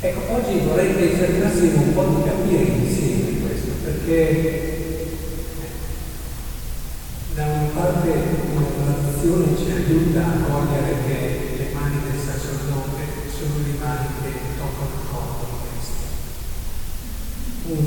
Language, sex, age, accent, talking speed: Italian, male, 40-59, native, 115 wpm